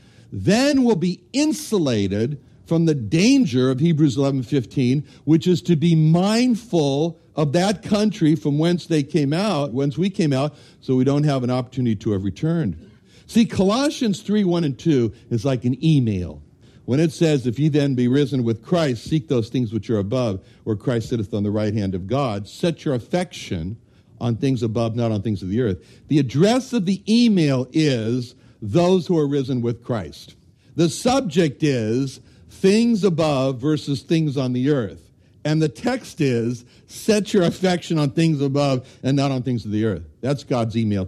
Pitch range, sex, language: 125-175 Hz, male, English